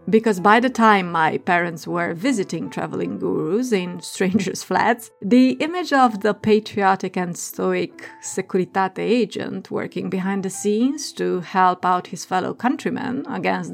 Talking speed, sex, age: 145 wpm, female, 30-49